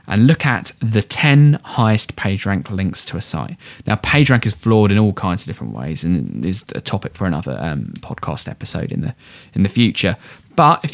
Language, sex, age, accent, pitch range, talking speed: English, male, 20-39, British, 100-130 Hz, 205 wpm